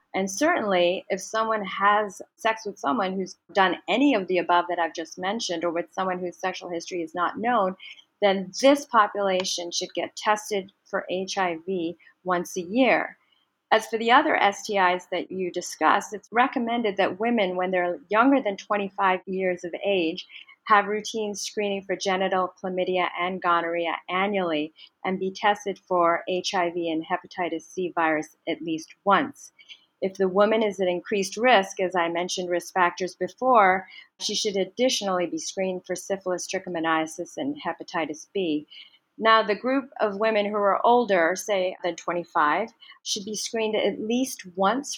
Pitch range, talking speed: 175-210 Hz, 160 wpm